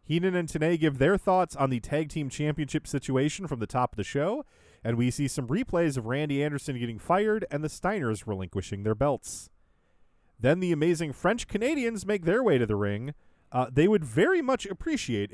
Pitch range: 120-170 Hz